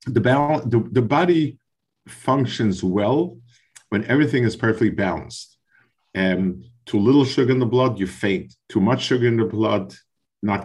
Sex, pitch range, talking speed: male, 95-120 Hz, 160 wpm